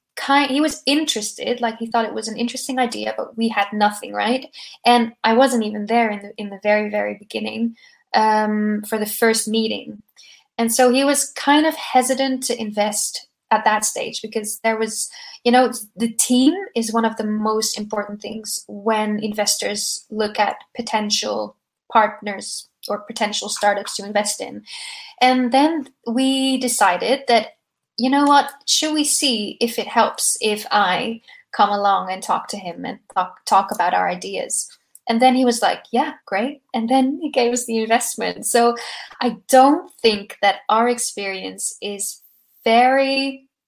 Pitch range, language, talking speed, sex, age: 210-255 Hz, English, 170 wpm, female, 10-29